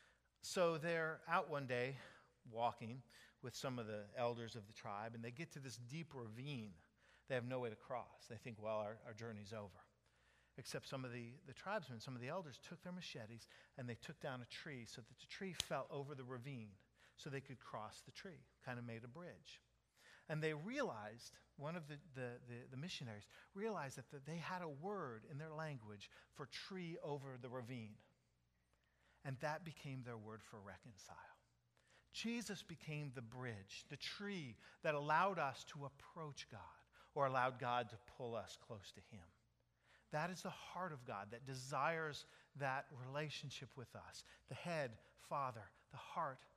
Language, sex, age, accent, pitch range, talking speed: English, male, 50-69, American, 115-150 Hz, 185 wpm